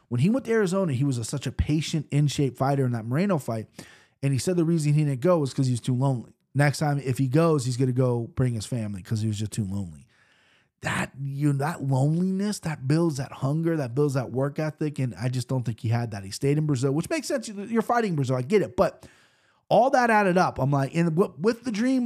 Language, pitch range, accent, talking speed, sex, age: English, 130-160 Hz, American, 260 wpm, male, 30-49